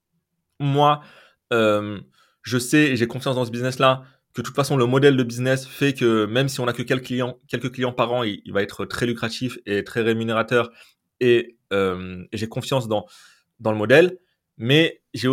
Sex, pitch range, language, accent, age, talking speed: male, 110-130 Hz, French, French, 20-39, 195 wpm